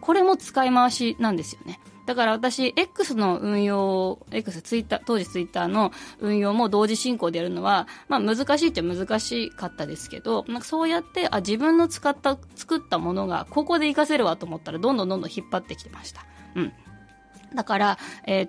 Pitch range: 195-290 Hz